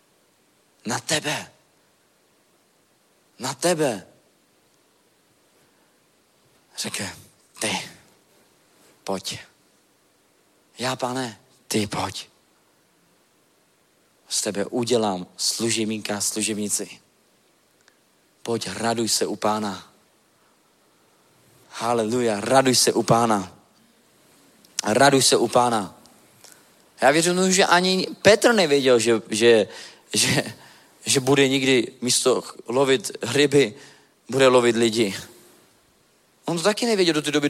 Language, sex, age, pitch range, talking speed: Czech, male, 40-59, 115-175 Hz, 90 wpm